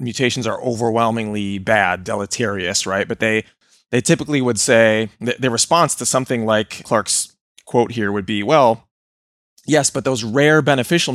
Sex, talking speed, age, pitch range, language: male, 155 wpm, 20-39, 105-125 Hz, English